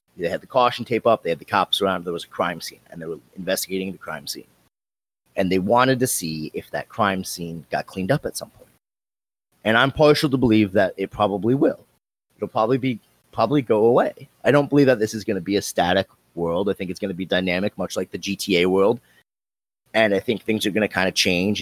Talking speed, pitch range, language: 240 wpm, 90-125 Hz, English